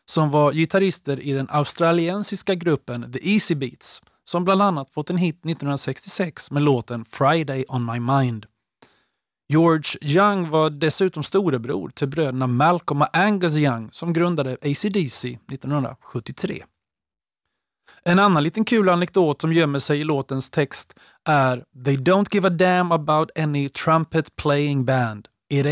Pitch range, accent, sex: 130-175 Hz, native, male